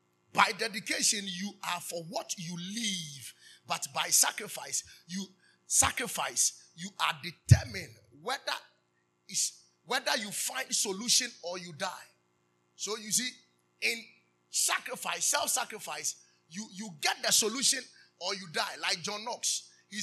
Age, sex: 30-49, male